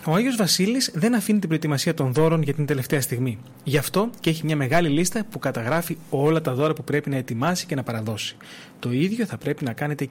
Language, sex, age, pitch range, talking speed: Greek, male, 30-49, 135-185 Hz, 225 wpm